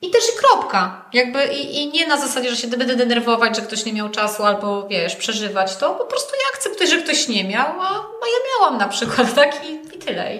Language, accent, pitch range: Polish, native, 225-280 Hz